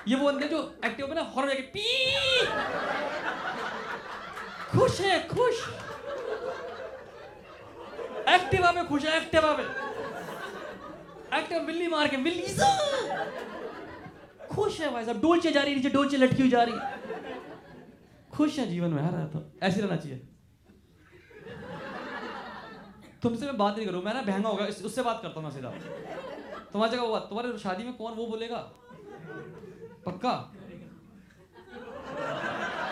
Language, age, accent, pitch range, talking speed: Hindi, 20-39, native, 190-280 Hz, 120 wpm